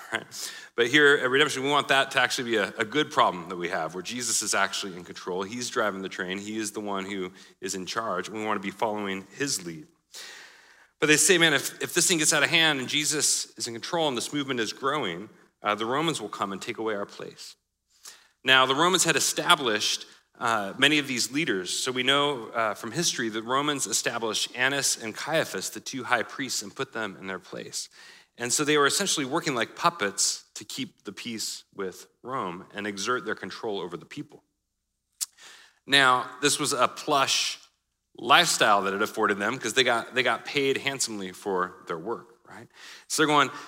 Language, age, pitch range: English, 40-59, 105-145 Hz